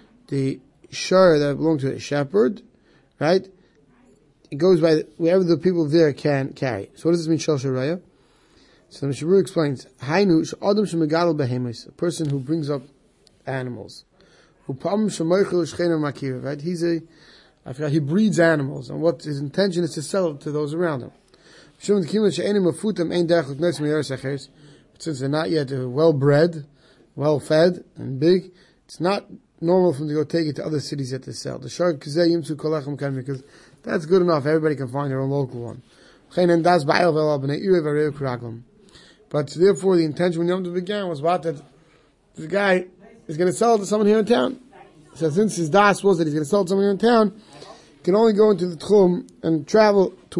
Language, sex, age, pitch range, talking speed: English, male, 30-49, 145-185 Hz, 175 wpm